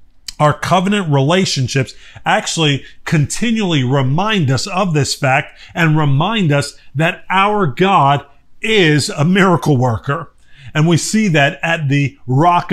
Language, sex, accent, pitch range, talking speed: English, male, American, 130-165 Hz, 125 wpm